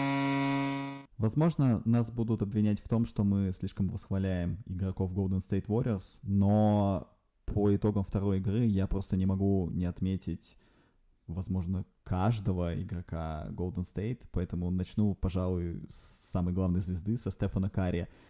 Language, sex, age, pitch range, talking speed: Russian, male, 20-39, 90-105 Hz, 130 wpm